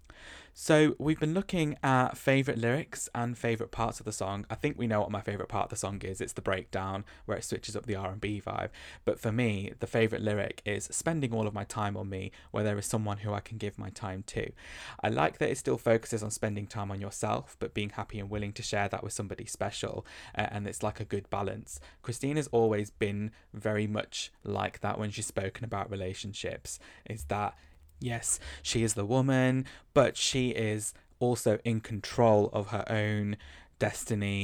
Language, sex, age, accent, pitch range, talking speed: English, male, 20-39, British, 100-115 Hz, 205 wpm